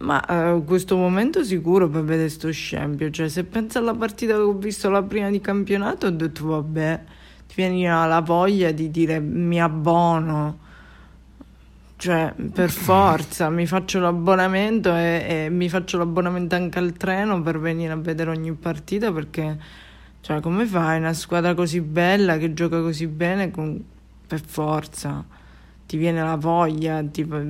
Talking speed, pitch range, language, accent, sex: 160 wpm, 160-195 Hz, Italian, native, female